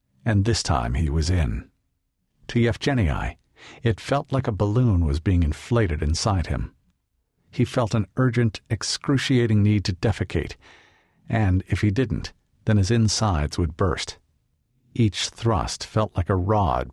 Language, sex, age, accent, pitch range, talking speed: English, male, 50-69, American, 90-115 Hz, 145 wpm